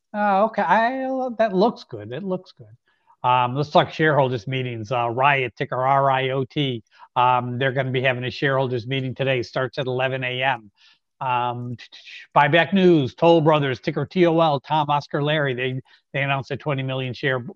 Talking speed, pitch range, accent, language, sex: 165 wpm, 120-140 Hz, American, English, male